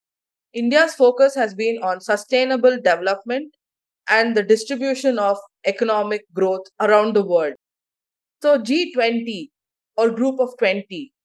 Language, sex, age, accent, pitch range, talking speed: English, female, 20-39, Indian, 205-265 Hz, 115 wpm